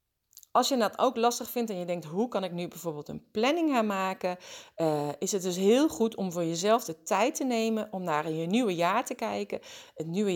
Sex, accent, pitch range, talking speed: female, Dutch, 165-225 Hz, 225 wpm